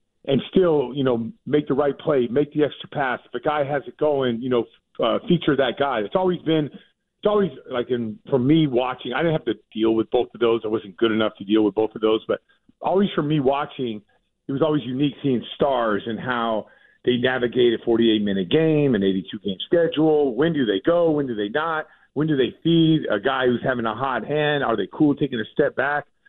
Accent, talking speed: American, 225 wpm